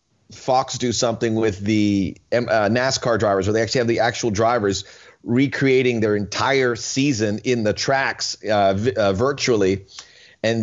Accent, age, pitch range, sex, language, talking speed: American, 30-49, 110-145 Hz, male, English, 150 wpm